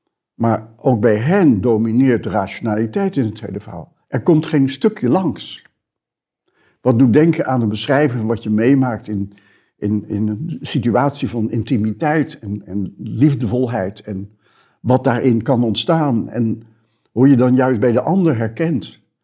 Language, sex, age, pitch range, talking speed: Dutch, male, 60-79, 110-155 Hz, 160 wpm